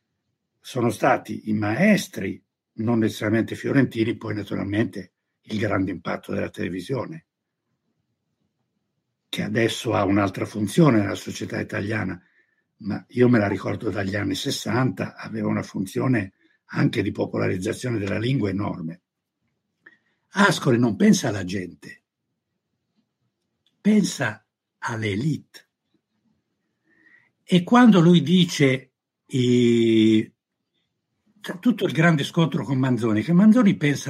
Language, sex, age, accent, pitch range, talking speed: Italian, male, 60-79, native, 110-170 Hz, 105 wpm